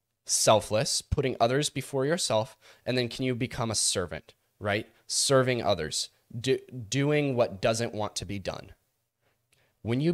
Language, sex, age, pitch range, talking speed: English, male, 20-39, 100-120 Hz, 150 wpm